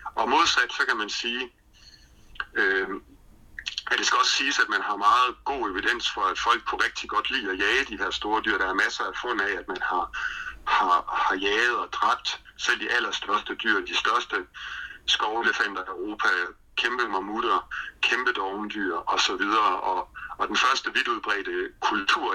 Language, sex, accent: Danish, male, native